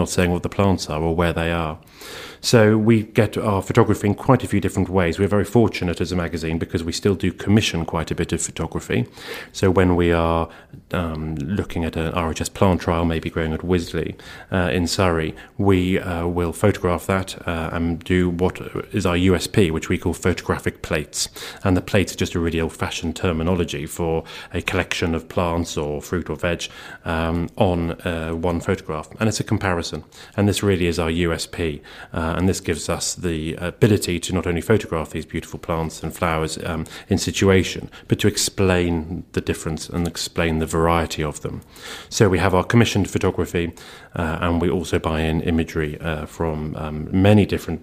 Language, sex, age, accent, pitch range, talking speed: English, male, 30-49, British, 80-95 Hz, 190 wpm